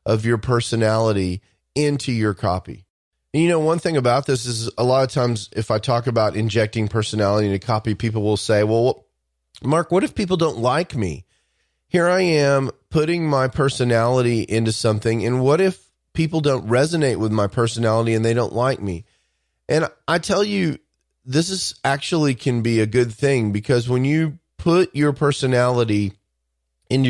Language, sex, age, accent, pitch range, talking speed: English, male, 30-49, American, 110-145 Hz, 175 wpm